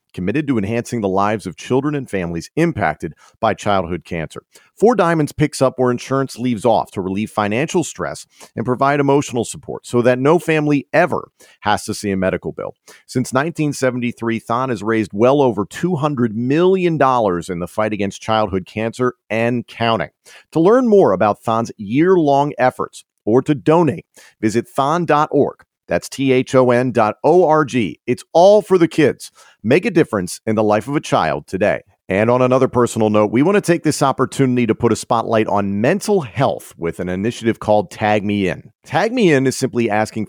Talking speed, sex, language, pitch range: 175 wpm, male, English, 105-135 Hz